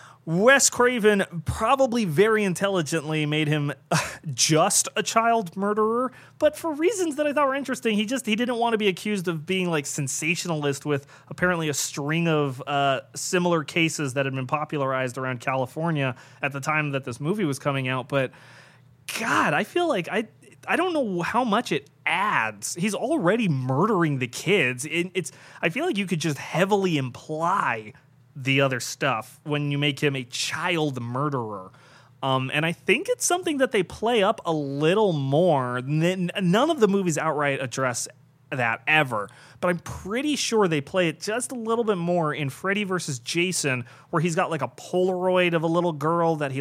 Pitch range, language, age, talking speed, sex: 140-190 Hz, English, 30-49, 185 wpm, male